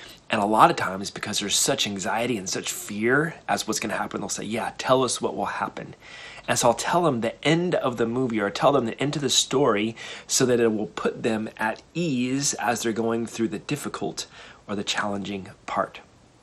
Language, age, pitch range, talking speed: English, 30-49, 115-145 Hz, 225 wpm